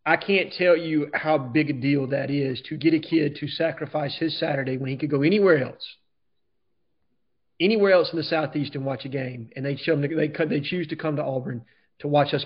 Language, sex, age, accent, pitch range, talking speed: English, male, 30-49, American, 140-160 Hz, 225 wpm